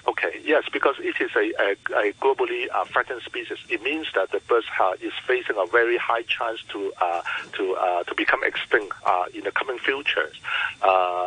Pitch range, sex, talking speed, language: 370-450 Hz, male, 195 wpm, English